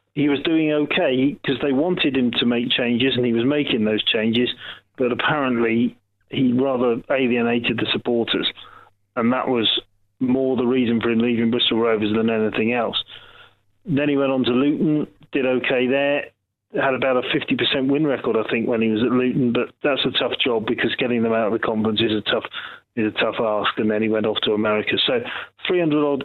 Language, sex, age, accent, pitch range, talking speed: English, male, 40-59, British, 115-135 Hz, 195 wpm